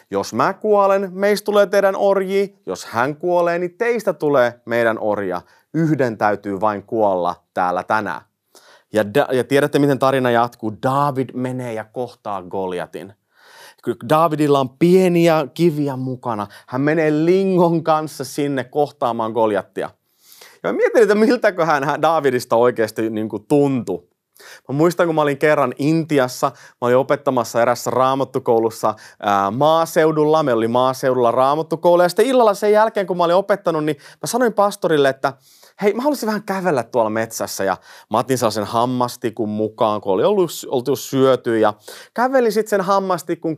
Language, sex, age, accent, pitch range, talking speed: Finnish, male, 30-49, native, 120-170 Hz, 145 wpm